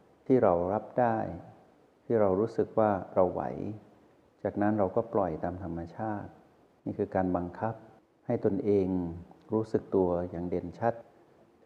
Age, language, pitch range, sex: 60-79, Thai, 90-110 Hz, male